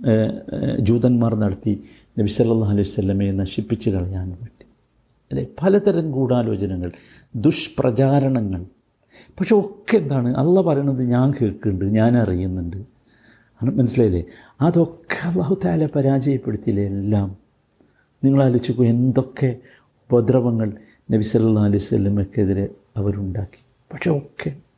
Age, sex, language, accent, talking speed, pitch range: 50-69, male, Malayalam, native, 85 wpm, 105-145 Hz